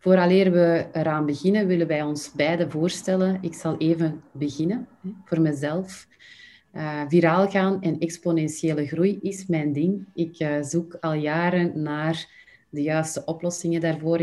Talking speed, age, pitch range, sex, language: 145 wpm, 30-49, 150-180 Hz, female, English